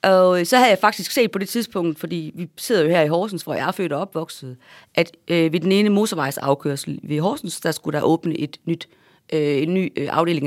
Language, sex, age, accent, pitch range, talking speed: Danish, female, 30-49, native, 145-190 Hz, 220 wpm